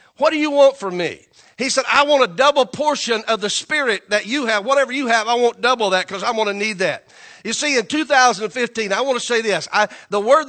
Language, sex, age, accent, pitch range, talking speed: English, male, 50-69, American, 205-270 Hz, 245 wpm